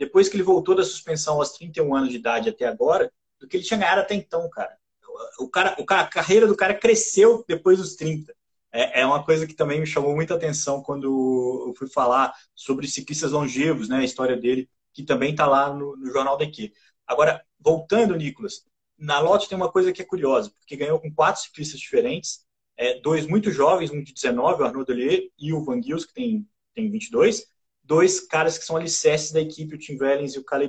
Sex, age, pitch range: male, 20-39, 140-200 Hz